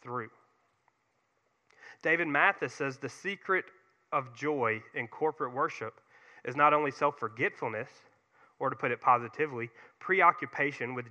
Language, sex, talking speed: English, male, 120 wpm